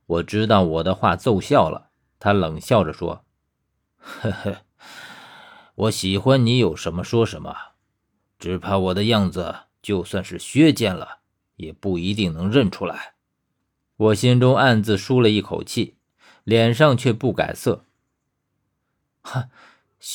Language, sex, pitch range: Chinese, male, 95-135 Hz